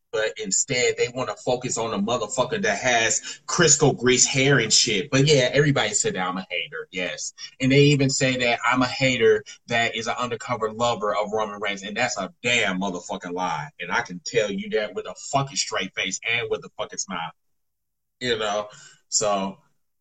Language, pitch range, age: English, 125-205 Hz, 30-49